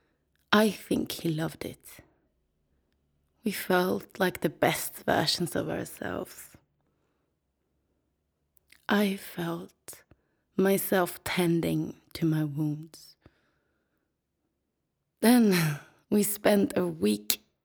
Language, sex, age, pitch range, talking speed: English, female, 20-39, 155-200 Hz, 85 wpm